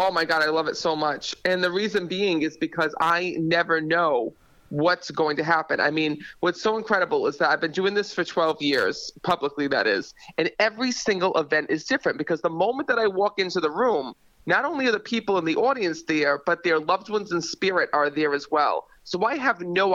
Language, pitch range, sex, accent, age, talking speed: English, 160-200 Hz, male, American, 30-49, 230 wpm